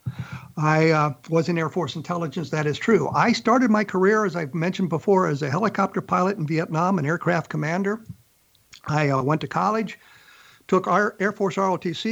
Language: English